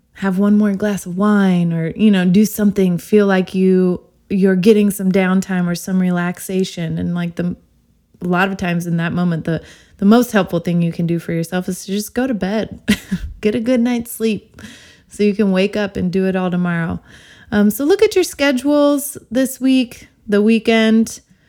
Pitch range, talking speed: 175-210 Hz, 200 wpm